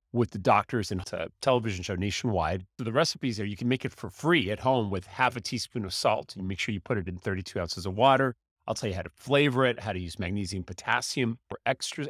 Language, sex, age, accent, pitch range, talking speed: English, male, 40-59, American, 100-135 Hz, 245 wpm